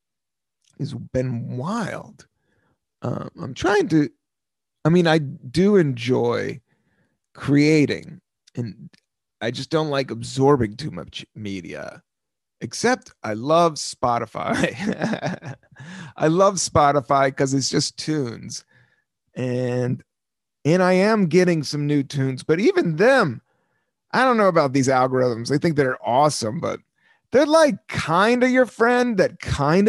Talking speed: 125 wpm